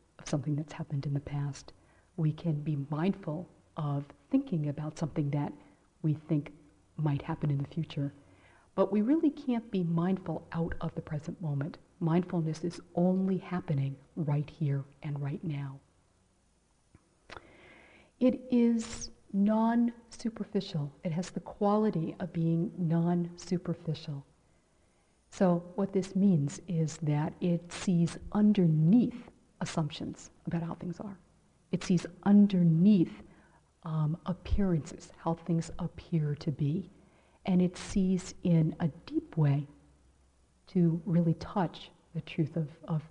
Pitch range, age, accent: 150-180 Hz, 50-69, American